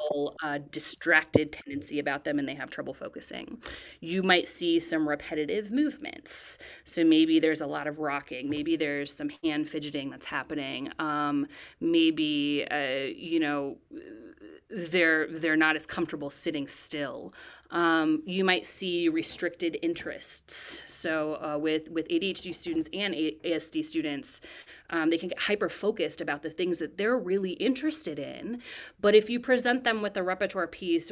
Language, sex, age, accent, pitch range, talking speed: English, female, 30-49, American, 160-240 Hz, 150 wpm